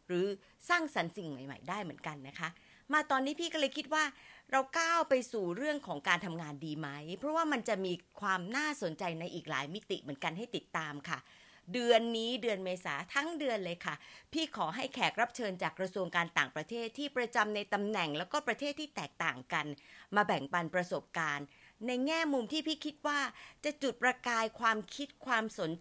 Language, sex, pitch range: Thai, female, 180-260 Hz